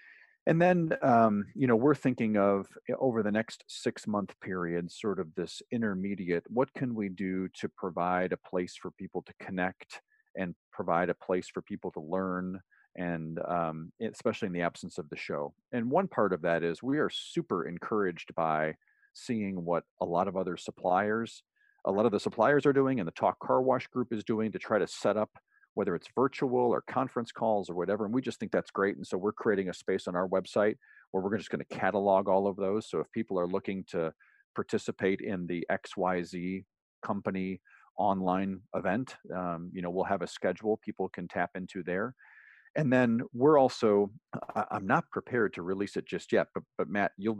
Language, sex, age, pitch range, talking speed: English, male, 40-59, 90-110 Hz, 200 wpm